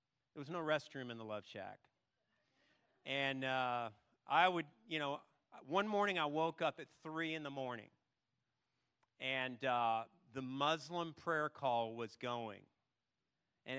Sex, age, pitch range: male, 40-59, 125-165 Hz